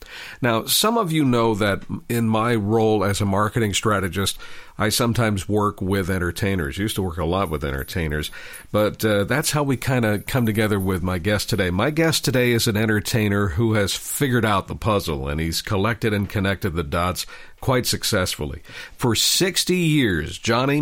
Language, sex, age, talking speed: English, male, 50-69, 180 wpm